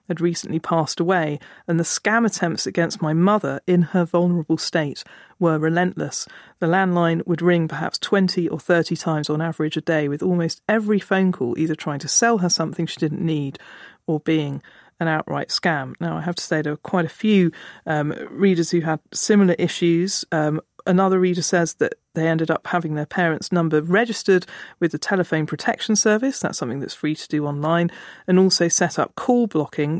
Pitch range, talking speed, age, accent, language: 155-185 Hz, 190 wpm, 40-59, British, English